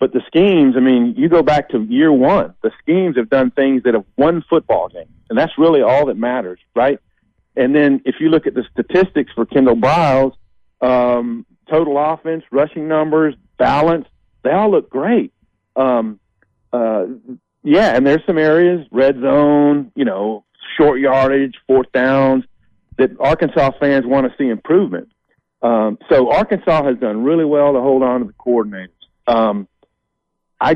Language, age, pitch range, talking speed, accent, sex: English, 50-69, 115-145 Hz, 170 wpm, American, male